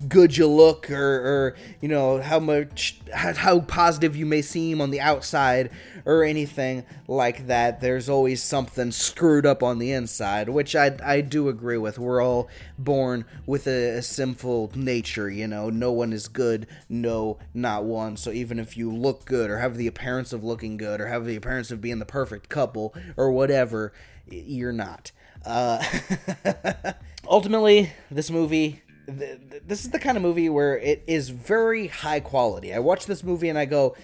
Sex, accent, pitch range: male, American, 125-165 Hz